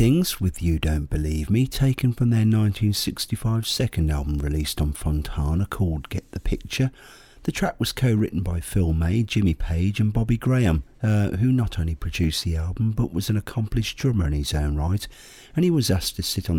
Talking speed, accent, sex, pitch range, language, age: 190 wpm, British, male, 90-125 Hz, English, 50-69